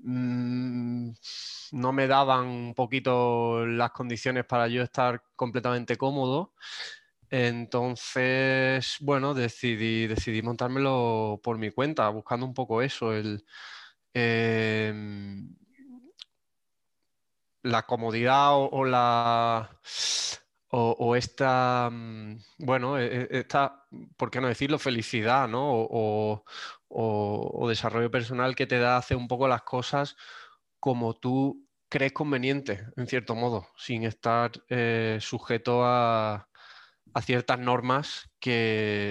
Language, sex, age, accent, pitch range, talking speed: Spanish, male, 20-39, Spanish, 115-130 Hz, 105 wpm